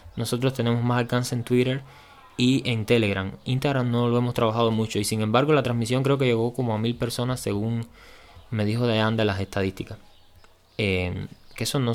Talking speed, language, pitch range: 190 wpm, Spanish, 105-125 Hz